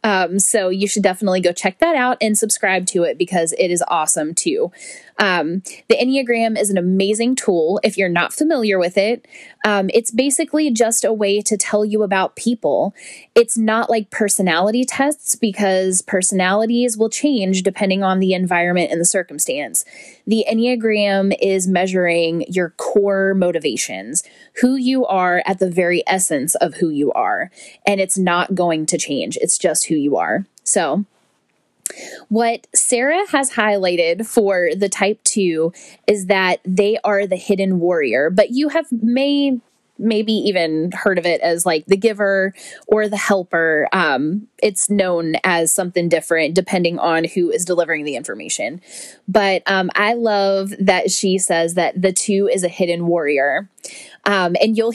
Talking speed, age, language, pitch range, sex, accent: 165 wpm, 10-29, English, 175-220 Hz, female, American